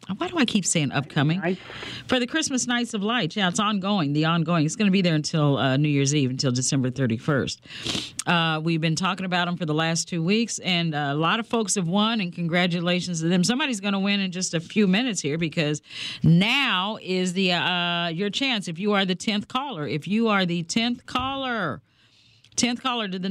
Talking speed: 220 wpm